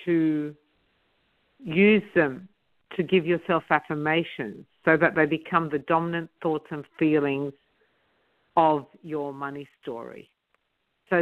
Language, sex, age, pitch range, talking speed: English, female, 50-69, 155-200 Hz, 110 wpm